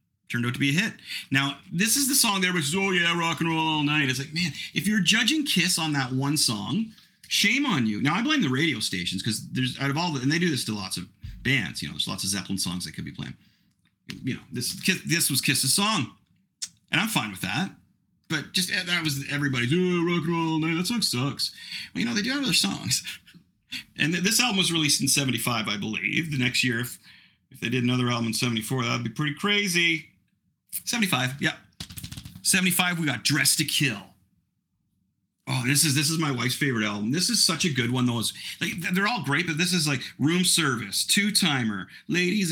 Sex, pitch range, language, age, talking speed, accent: male, 125-180 Hz, English, 40-59, 225 wpm, American